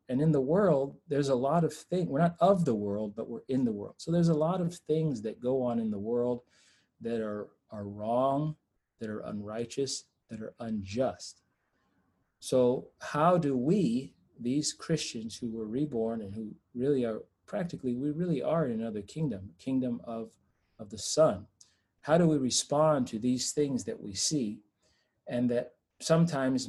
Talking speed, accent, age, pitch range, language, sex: 180 wpm, American, 40-59, 110-135 Hz, English, male